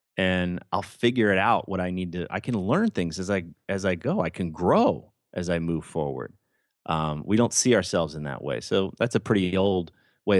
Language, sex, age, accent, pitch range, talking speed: English, male, 30-49, American, 85-105 Hz, 225 wpm